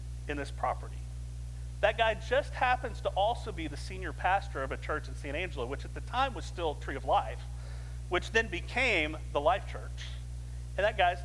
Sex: male